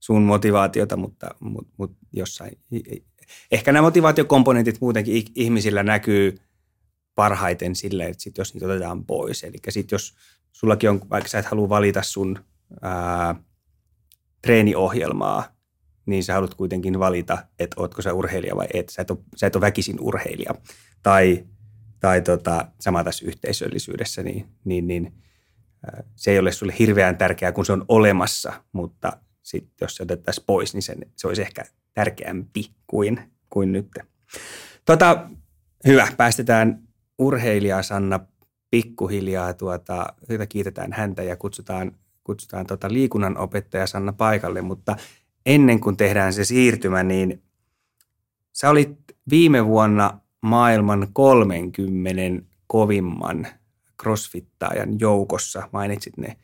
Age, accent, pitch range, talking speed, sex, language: 30-49, native, 95-110 Hz, 130 wpm, male, Finnish